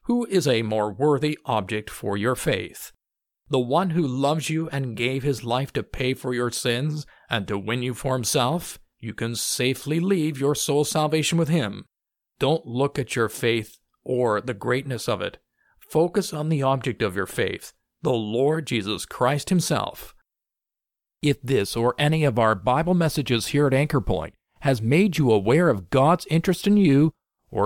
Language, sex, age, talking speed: English, male, 50-69, 180 wpm